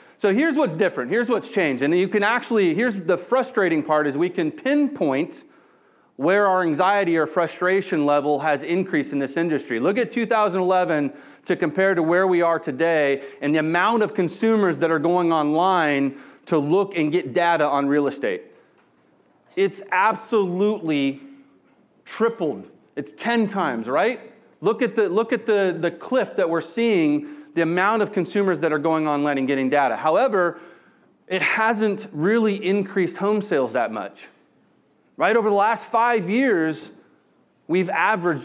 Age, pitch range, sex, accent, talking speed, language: 30-49, 170-220 Hz, male, American, 155 wpm, English